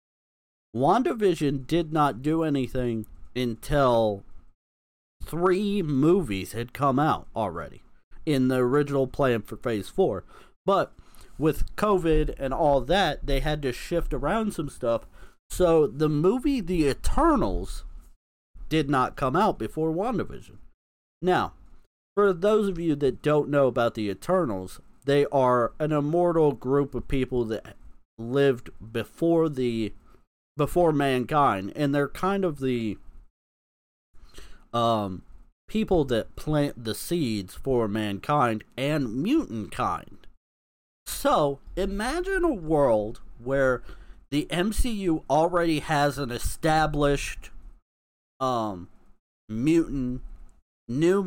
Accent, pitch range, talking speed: American, 110-155 Hz, 115 wpm